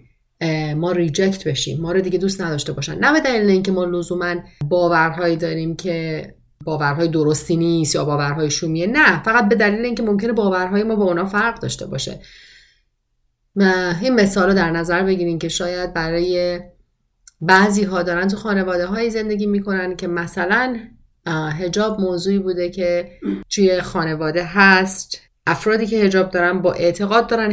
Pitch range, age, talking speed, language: 170-205 Hz, 30-49, 150 wpm, Persian